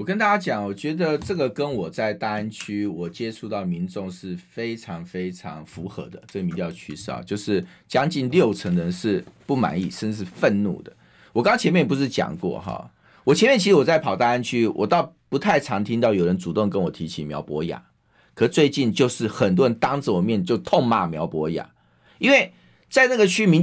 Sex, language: male, Chinese